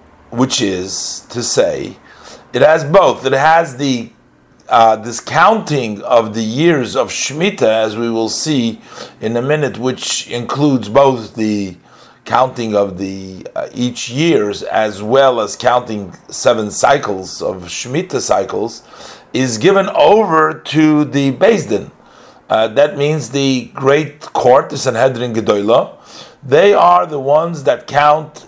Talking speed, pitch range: 135 wpm, 115-150 Hz